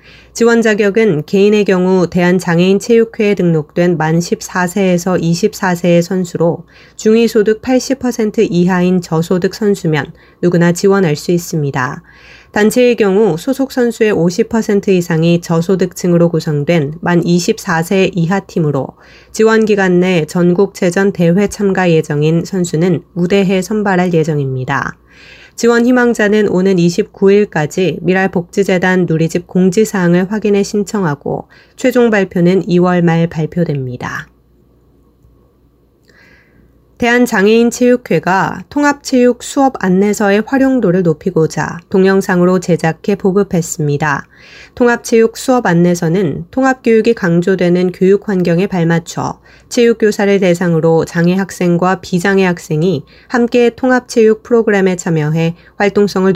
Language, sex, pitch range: Korean, female, 170-210 Hz